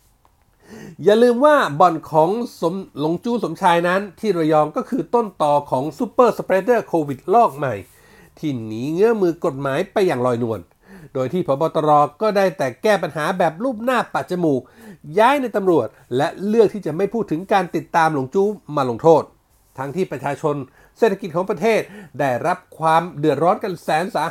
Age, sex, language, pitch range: 60-79, male, Thai, 145-215 Hz